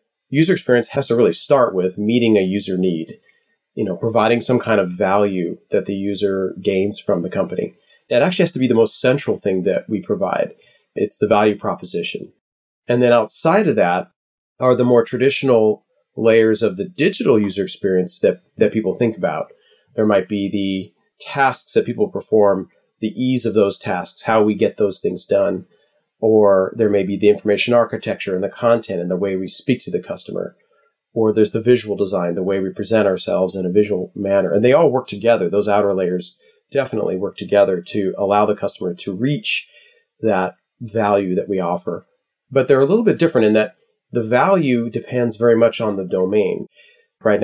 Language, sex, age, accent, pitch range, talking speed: English, male, 30-49, American, 100-120 Hz, 190 wpm